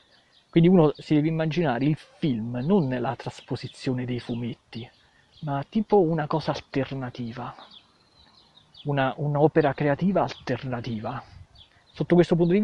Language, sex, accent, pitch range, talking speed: Italian, male, native, 125-155 Hz, 120 wpm